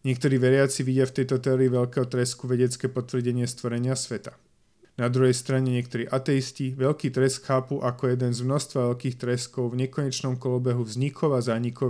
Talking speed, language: 160 wpm, Slovak